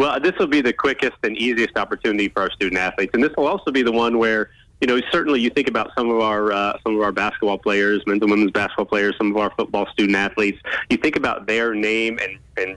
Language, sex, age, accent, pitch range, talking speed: English, male, 30-49, American, 100-115 Hz, 245 wpm